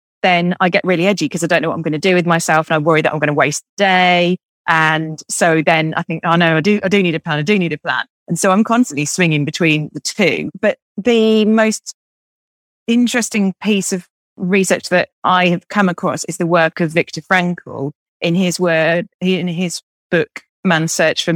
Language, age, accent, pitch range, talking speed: English, 30-49, British, 155-190 Hz, 225 wpm